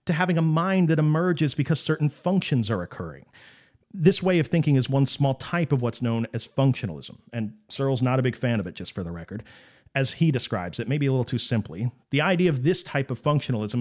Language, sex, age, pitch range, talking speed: English, male, 40-59, 120-155 Hz, 225 wpm